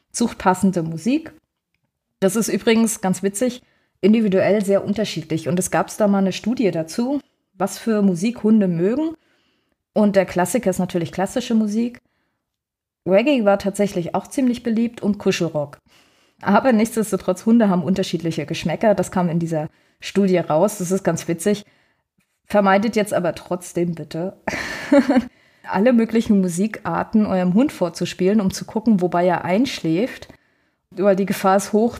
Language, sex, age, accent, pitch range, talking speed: German, female, 20-39, German, 180-220 Hz, 145 wpm